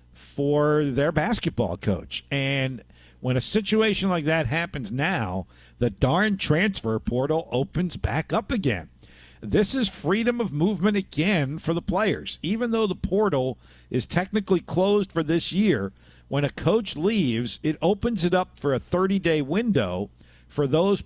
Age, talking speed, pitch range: 50-69, 150 wpm, 130-195 Hz